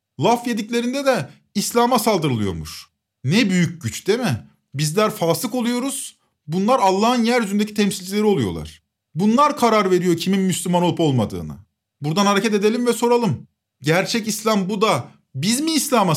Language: Turkish